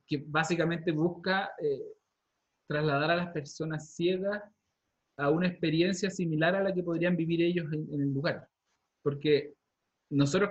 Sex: male